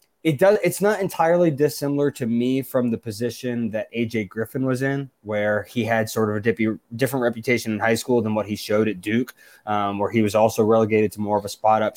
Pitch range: 100-125 Hz